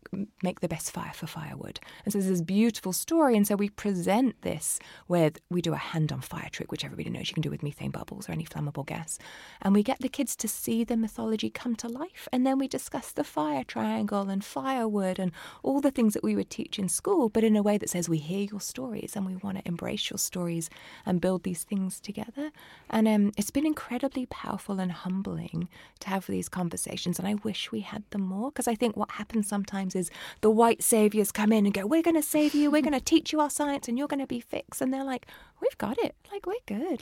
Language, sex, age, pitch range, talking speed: English, female, 20-39, 175-235 Hz, 245 wpm